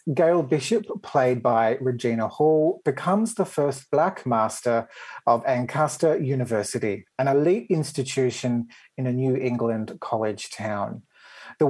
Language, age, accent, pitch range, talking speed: English, 40-59, Australian, 120-155 Hz, 125 wpm